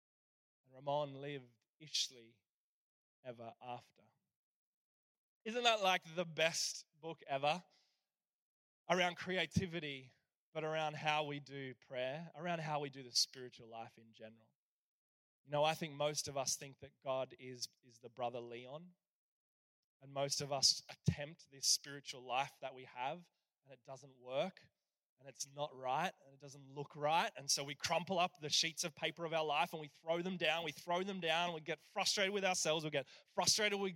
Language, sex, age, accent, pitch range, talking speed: English, male, 20-39, Australian, 135-165 Hz, 170 wpm